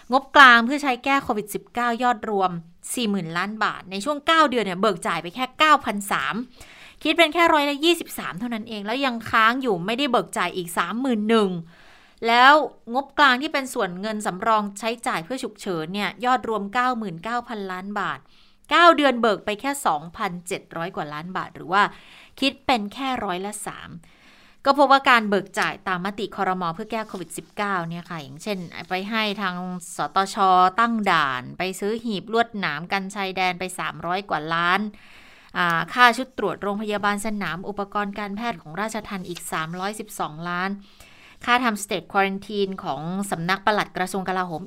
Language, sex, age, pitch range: Thai, female, 20-39, 185-230 Hz